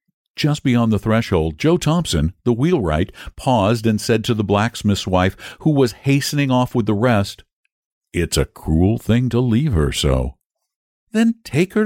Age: 60-79